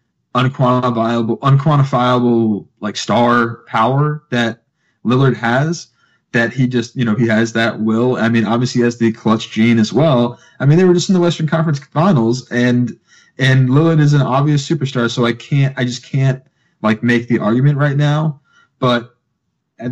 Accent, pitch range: American, 115-140 Hz